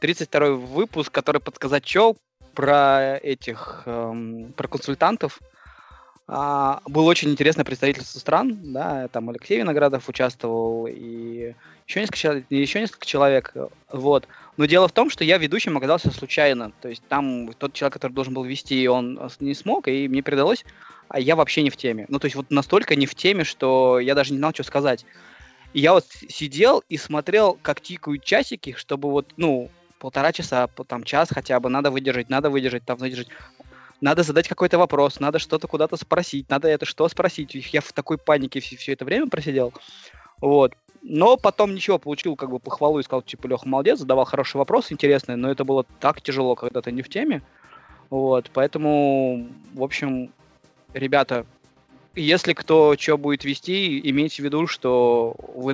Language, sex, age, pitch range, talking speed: Russian, male, 20-39, 130-150 Hz, 170 wpm